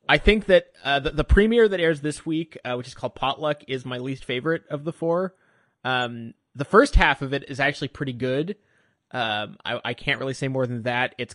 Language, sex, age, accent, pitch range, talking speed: English, male, 20-39, American, 125-160 Hz, 225 wpm